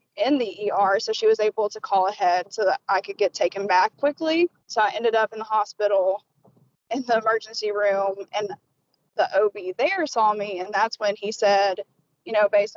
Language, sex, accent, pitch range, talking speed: English, female, American, 200-230 Hz, 200 wpm